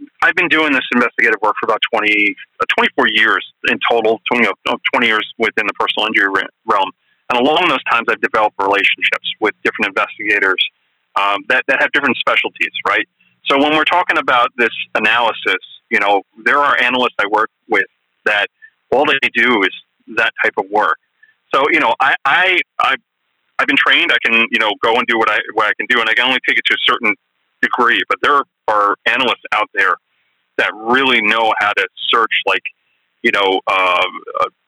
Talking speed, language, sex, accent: 200 wpm, English, male, American